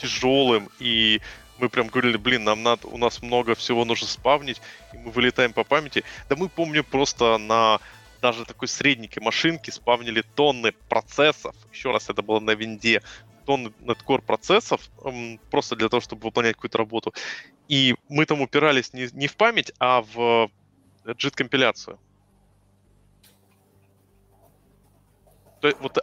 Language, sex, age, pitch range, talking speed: Russian, male, 20-39, 105-140 Hz, 135 wpm